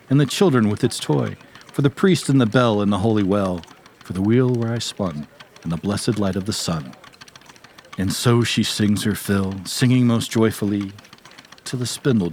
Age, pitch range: 40-59, 95-125 Hz